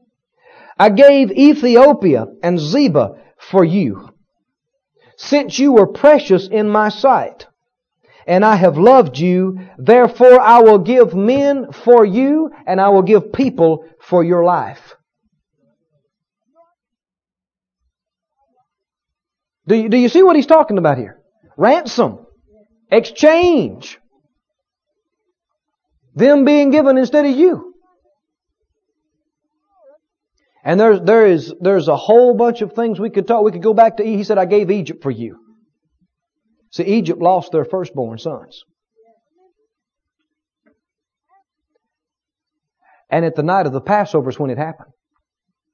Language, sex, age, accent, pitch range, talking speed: English, male, 40-59, American, 165-270 Hz, 125 wpm